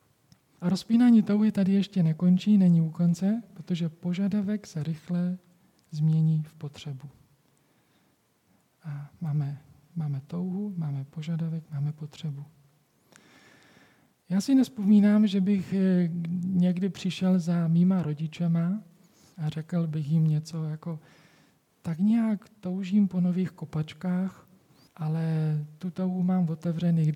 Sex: male